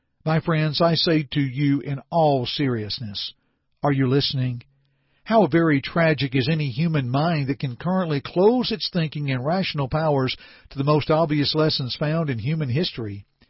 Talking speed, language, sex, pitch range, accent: 165 wpm, English, male, 130-160 Hz, American